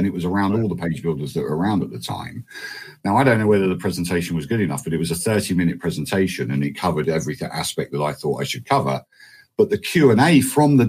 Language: English